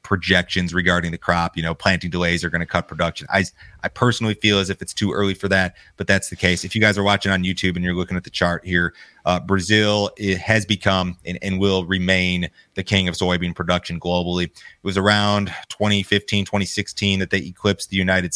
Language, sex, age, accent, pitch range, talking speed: English, male, 30-49, American, 85-95 Hz, 220 wpm